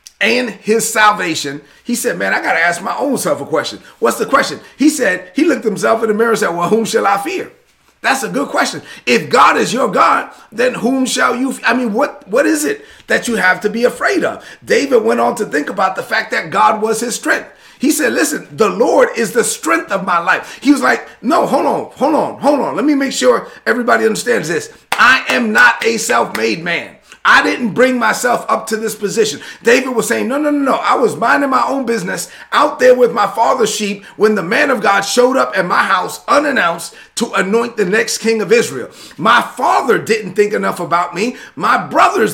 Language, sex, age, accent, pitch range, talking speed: English, male, 30-49, American, 220-270 Hz, 225 wpm